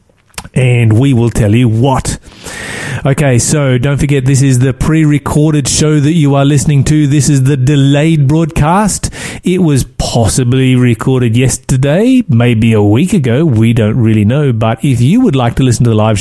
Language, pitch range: English, 130-165 Hz